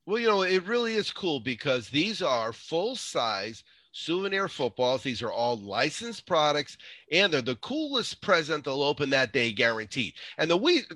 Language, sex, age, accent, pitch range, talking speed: English, male, 40-59, American, 135-195 Hz, 170 wpm